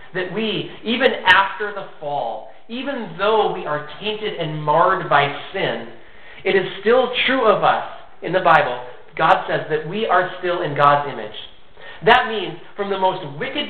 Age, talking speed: 40-59, 170 wpm